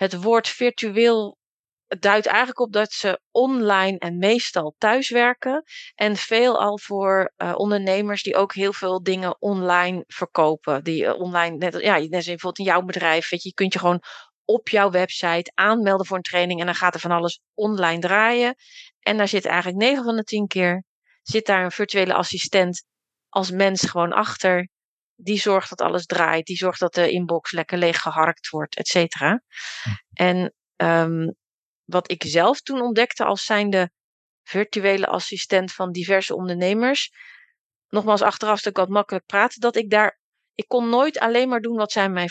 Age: 30-49